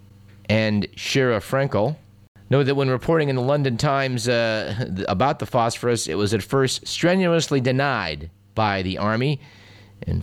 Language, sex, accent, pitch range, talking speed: English, male, American, 100-140 Hz, 145 wpm